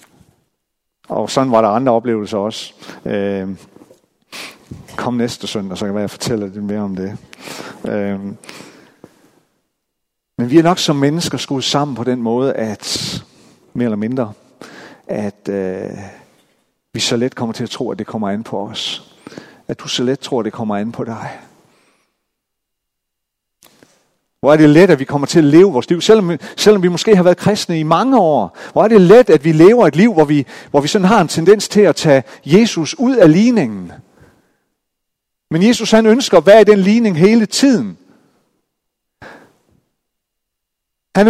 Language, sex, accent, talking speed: Danish, male, native, 170 wpm